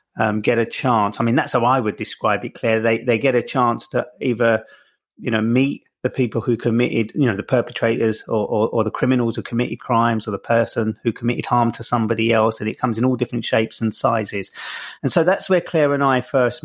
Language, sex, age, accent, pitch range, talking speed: English, male, 30-49, British, 110-125 Hz, 235 wpm